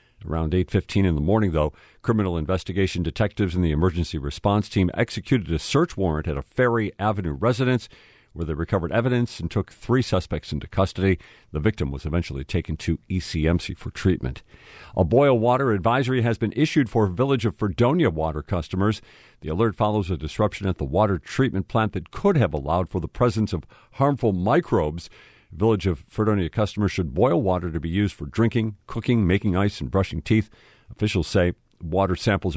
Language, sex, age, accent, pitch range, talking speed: English, male, 50-69, American, 90-120 Hz, 180 wpm